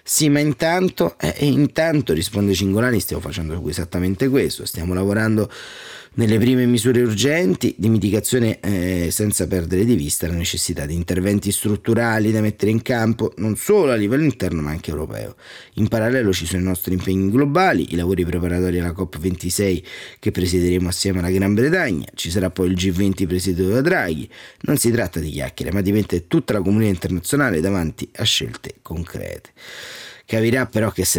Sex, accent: male, native